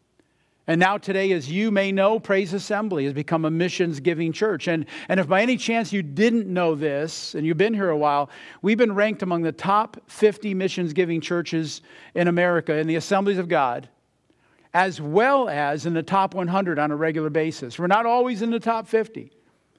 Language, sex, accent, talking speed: English, male, American, 195 wpm